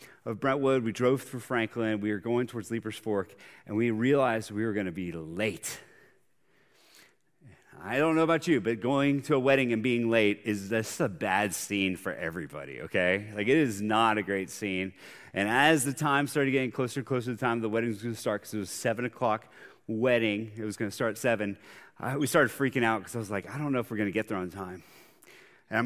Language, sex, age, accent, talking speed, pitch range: English, male, 30-49, American, 230 wpm, 115-155 Hz